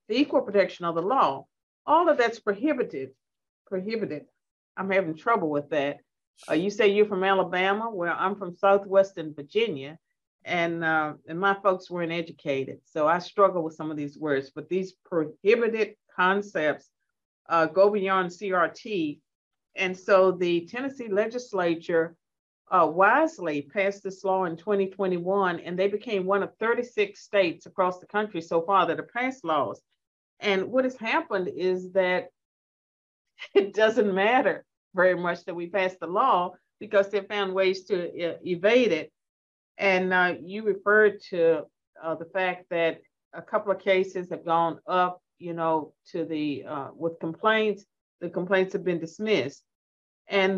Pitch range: 165-200 Hz